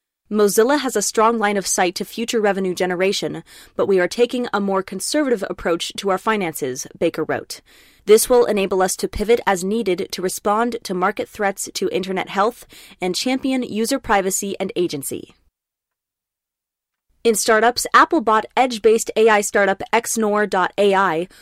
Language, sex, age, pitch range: English, female, 20-39, 185-230 Hz